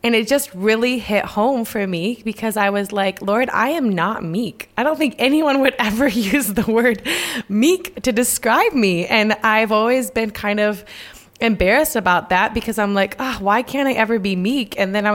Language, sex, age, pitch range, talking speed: English, female, 20-39, 190-225 Hz, 205 wpm